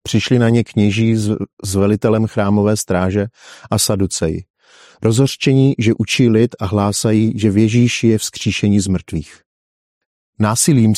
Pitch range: 105-125 Hz